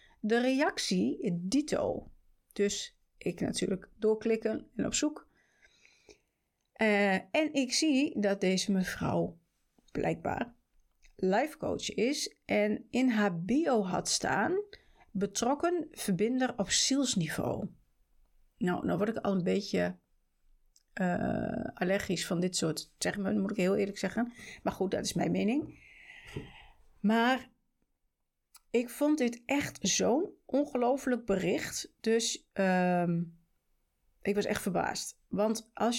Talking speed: 120 wpm